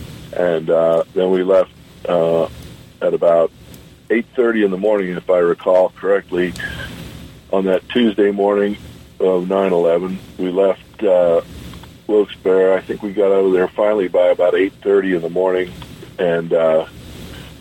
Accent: American